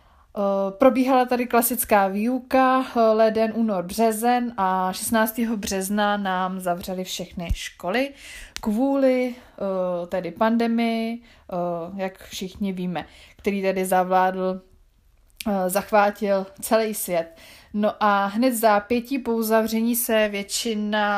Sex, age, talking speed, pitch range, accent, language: female, 20-39, 105 wpm, 185-215 Hz, native, Czech